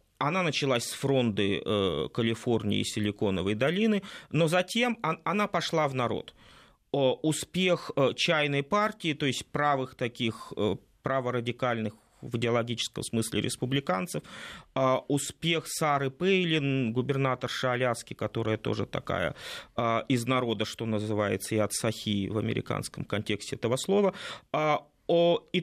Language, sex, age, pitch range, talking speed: Russian, male, 30-49, 115-155 Hz, 110 wpm